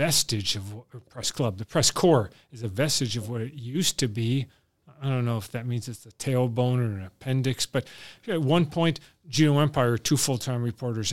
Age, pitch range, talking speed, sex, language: 40-59, 115-145 Hz, 205 wpm, male, English